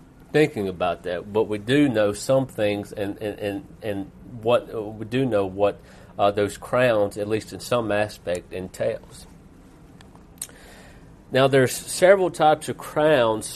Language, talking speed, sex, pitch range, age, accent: English, 150 wpm, male, 110-145 Hz, 40-59, American